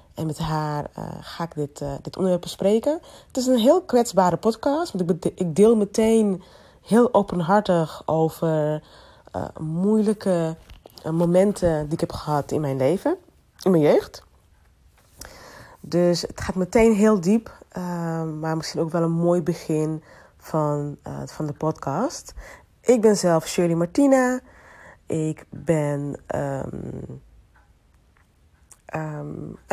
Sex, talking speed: female, 130 wpm